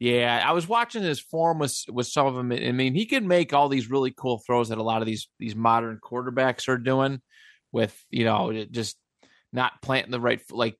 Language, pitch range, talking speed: English, 115-150 Hz, 220 wpm